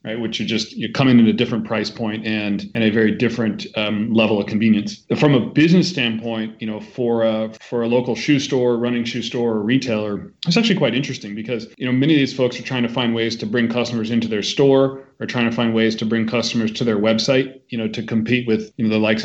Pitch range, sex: 110-130 Hz, male